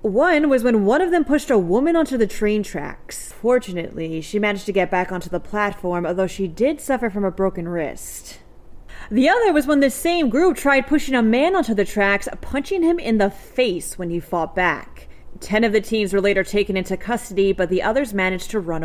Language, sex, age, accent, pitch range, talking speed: English, female, 30-49, American, 175-230 Hz, 215 wpm